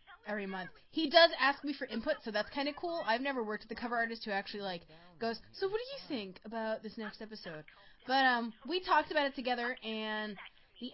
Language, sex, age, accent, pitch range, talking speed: English, female, 20-39, American, 195-260 Hz, 230 wpm